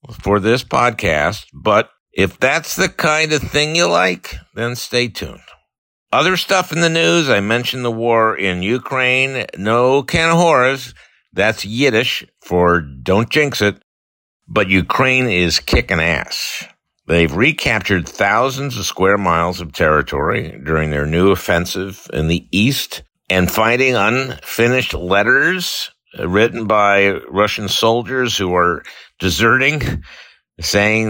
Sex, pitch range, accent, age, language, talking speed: male, 90-125 Hz, American, 60-79, English, 125 wpm